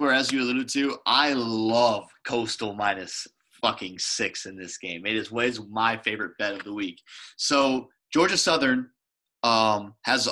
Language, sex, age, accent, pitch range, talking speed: English, male, 20-39, American, 105-130 Hz, 165 wpm